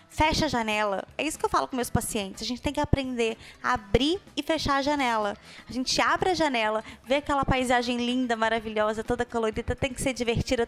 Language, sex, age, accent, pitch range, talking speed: Portuguese, female, 20-39, Brazilian, 225-305 Hz, 215 wpm